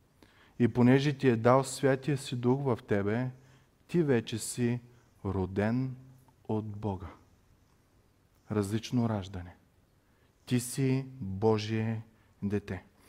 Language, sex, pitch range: Bulgarian, male, 130-190 Hz